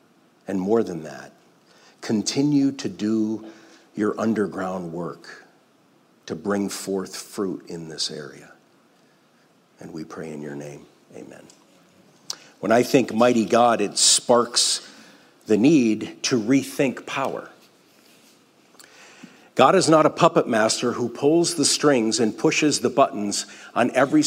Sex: male